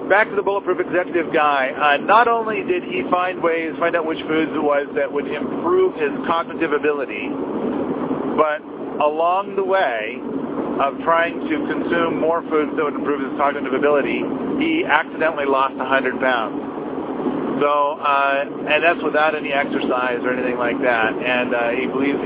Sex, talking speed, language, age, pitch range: male, 165 wpm, English, 50-69, 140-180 Hz